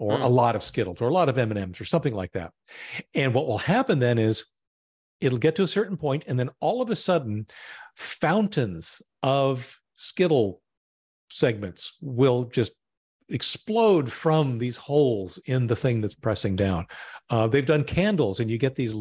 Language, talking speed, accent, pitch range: English, 175 wpm, American, 110-140 Hz